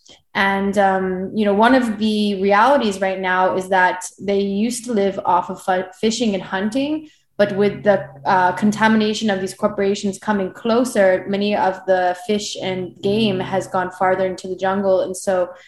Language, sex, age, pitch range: English, female, 20-39, 190-215 Hz